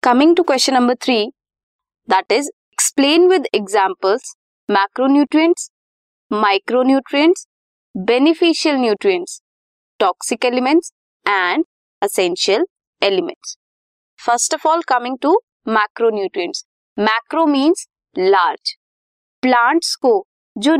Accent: native